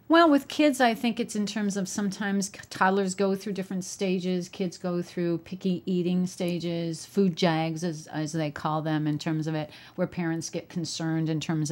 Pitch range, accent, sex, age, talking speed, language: 160-200 Hz, American, female, 40-59, 195 wpm, English